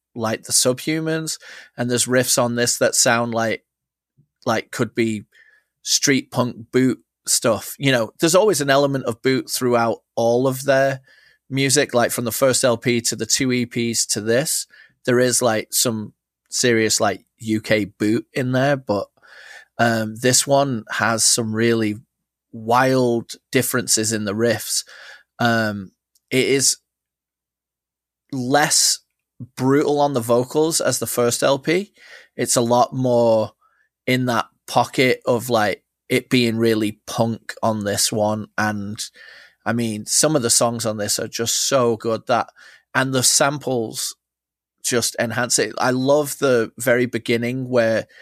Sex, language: male, English